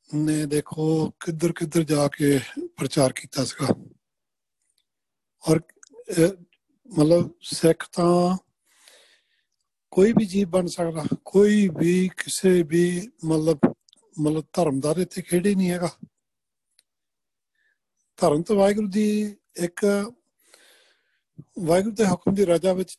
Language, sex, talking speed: Punjabi, male, 100 wpm